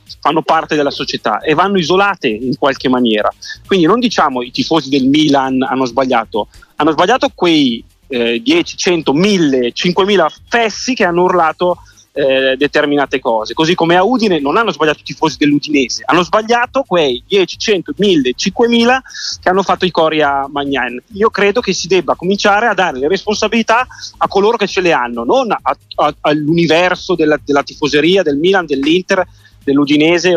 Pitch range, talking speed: 140-200 Hz, 165 wpm